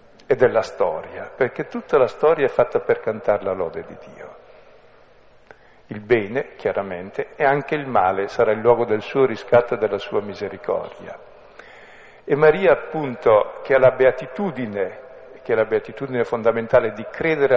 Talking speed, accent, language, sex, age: 155 wpm, native, Italian, male, 50-69